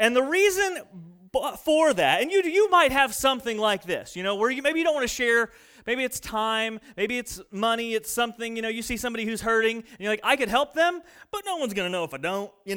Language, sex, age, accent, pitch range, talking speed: English, male, 30-49, American, 215-285 Hz, 265 wpm